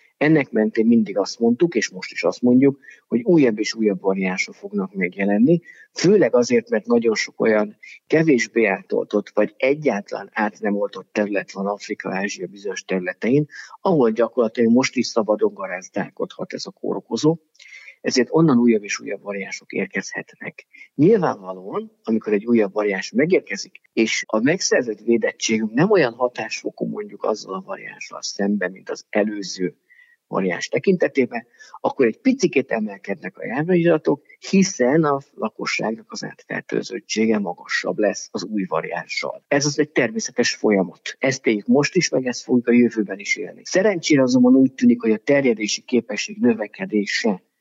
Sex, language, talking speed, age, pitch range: male, Hungarian, 140 wpm, 50-69, 105-135 Hz